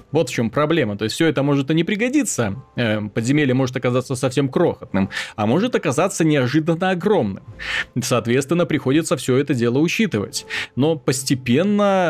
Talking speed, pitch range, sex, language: 150 wpm, 120-155 Hz, male, Russian